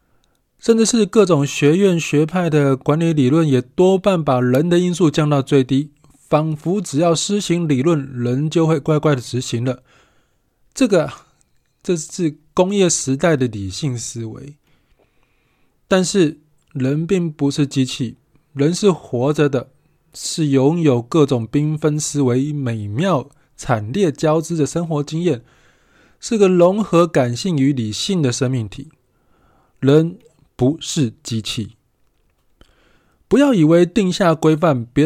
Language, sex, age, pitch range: Chinese, male, 20-39, 130-170 Hz